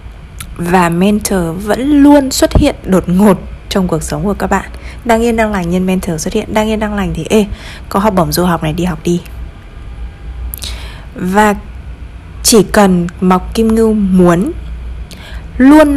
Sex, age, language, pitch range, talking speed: female, 20-39, Vietnamese, 150-210 Hz, 170 wpm